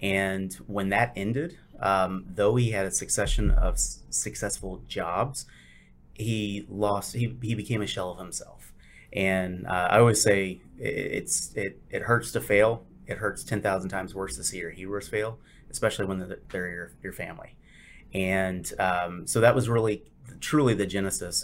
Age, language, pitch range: 30-49, English, 90-105 Hz